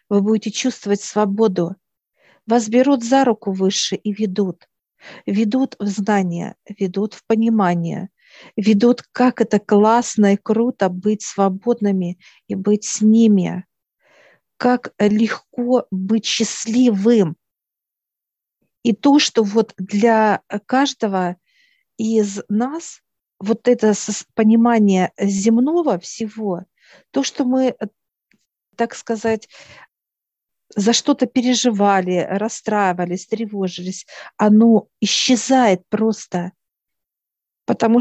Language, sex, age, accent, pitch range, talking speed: Russian, female, 50-69, native, 200-235 Hz, 95 wpm